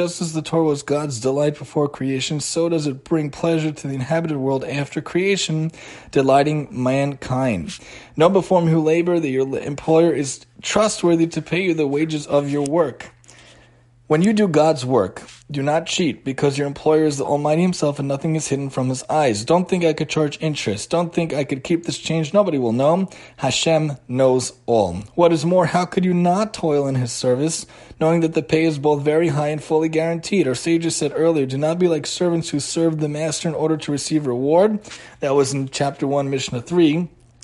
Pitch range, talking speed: 140-165 Hz, 205 wpm